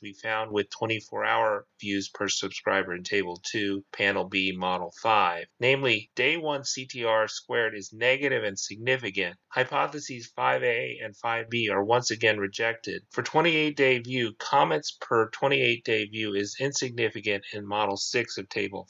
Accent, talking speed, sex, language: American, 145 wpm, male, English